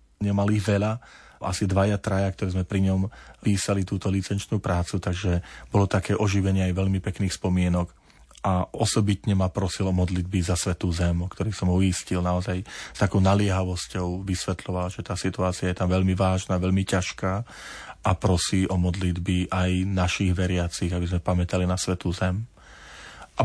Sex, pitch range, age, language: male, 90-100 Hz, 30-49, Slovak